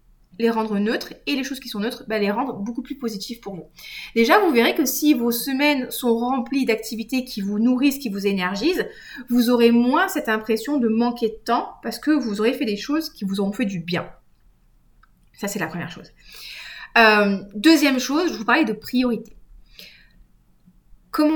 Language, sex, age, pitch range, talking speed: French, female, 20-39, 205-270 Hz, 195 wpm